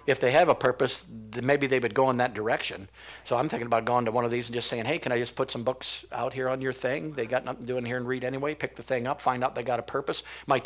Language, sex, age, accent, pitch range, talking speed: English, male, 50-69, American, 120-135 Hz, 320 wpm